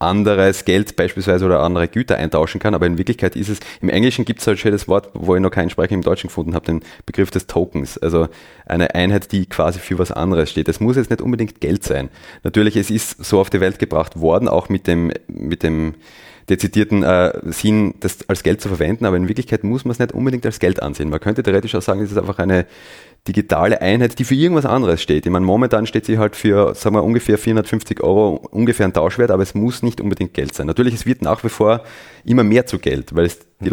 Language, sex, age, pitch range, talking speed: German, male, 30-49, 85-105 Hz, 235 wpm